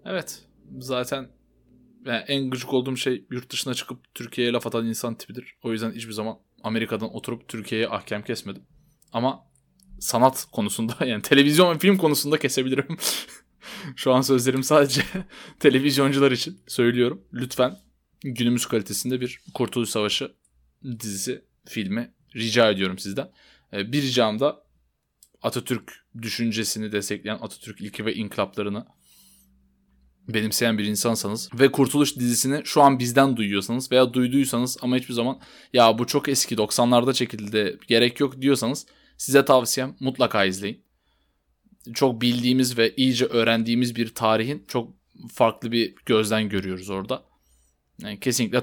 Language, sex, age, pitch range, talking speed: Turkish, male, 20-39, 110-130 Hz, 130 wpm